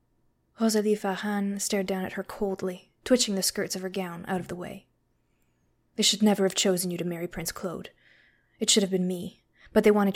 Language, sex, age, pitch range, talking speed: English, female, 20-39, 185-210 Hz, 205 wpm